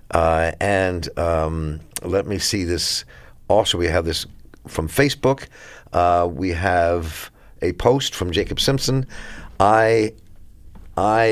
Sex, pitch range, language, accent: male, 85-100 Hz, English, American